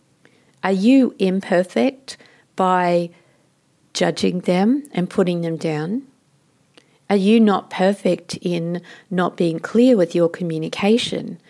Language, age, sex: English, 50-69, female